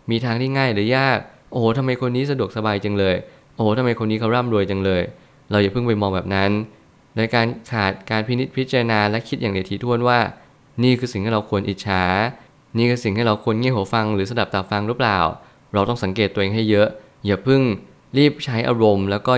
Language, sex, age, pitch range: Thai, male, 20-39, 105-125 Hz